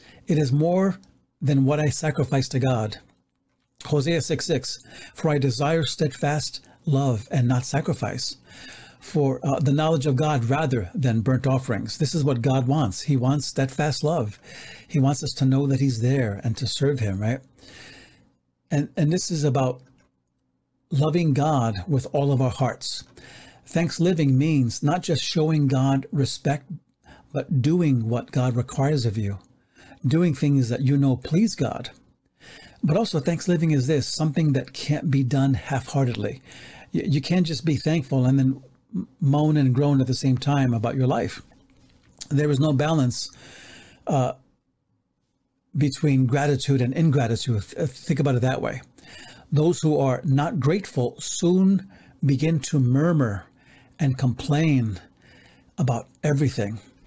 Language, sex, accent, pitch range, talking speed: English, male, American, 130-155 Hz, 150 wpm